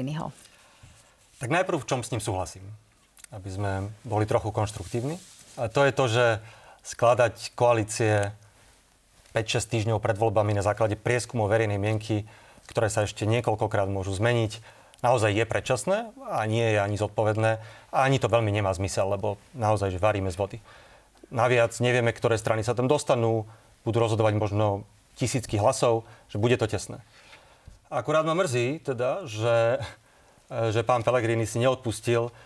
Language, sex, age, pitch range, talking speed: Slovak, male, 30-49, 110-125 Hz, 150 wpm